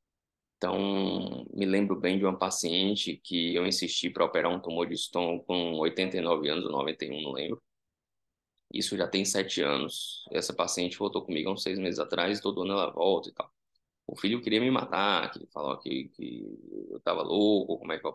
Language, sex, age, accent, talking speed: Portuguese, male, 20-39, Brazilian, 200 wpm